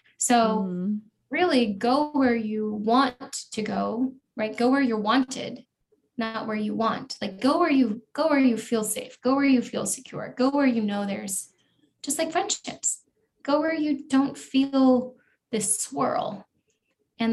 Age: 10-29